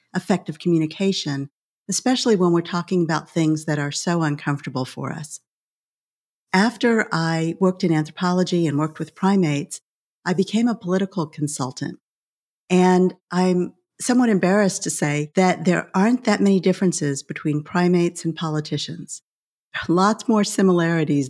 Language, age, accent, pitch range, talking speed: English, 50-69, American, 160-195 Hz, 130 wpm